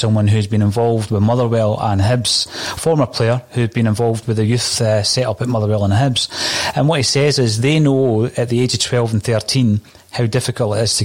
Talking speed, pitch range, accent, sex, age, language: 230 wpm, 110-135 Hz, British, male, 30-49, English